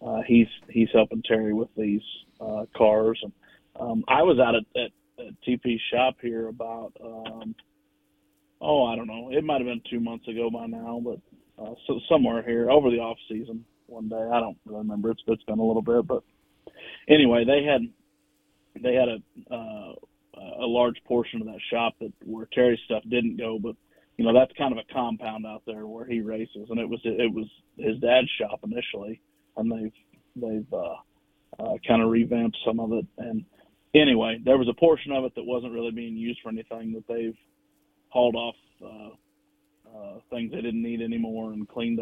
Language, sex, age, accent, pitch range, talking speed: English, male, 30-49, American, 110-125 Hz, 195 wpm